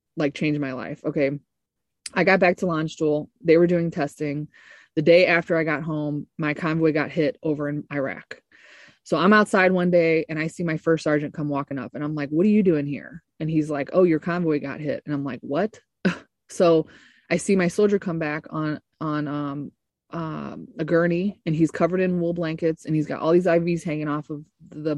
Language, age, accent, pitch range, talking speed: English, 20-39, American, 150-170 Hz, 220 wpm